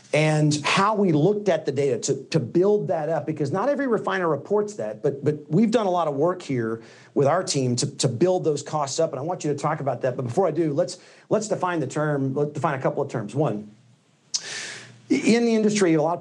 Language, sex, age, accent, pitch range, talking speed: English, male, 40-59, American, 130-175 Hz, 245 wpm